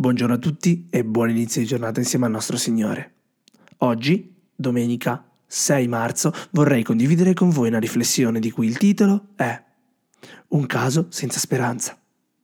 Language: Italian